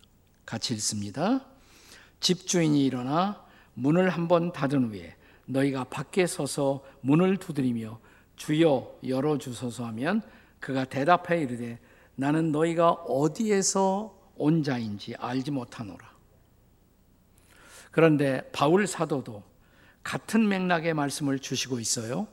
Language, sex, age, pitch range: Korean, male, 50-69, 115-165 Hz